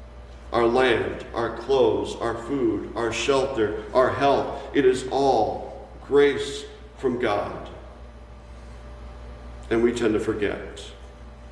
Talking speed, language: 110 wpm, English